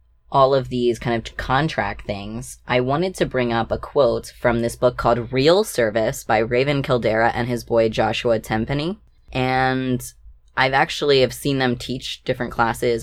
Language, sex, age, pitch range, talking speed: English, female, 10-29, 115-135 Hz, 170 wpm